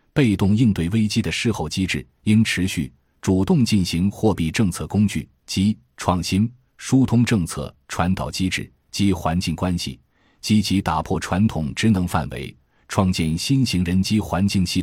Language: Chinese